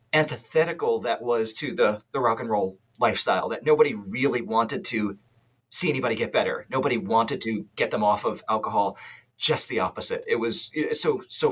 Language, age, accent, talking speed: English, 40-59, American, 175 wpm